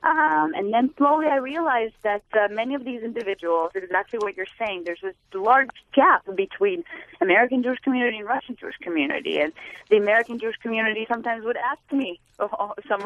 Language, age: English, 20-39